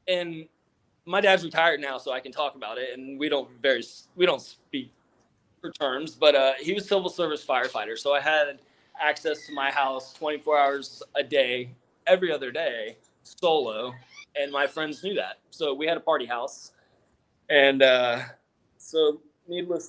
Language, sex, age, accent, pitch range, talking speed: English, male, 20-39, American, 135-175 Hz, 170 wpm